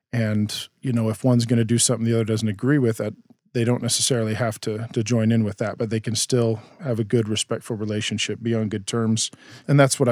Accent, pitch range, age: American, 110-120 Hz, 40-59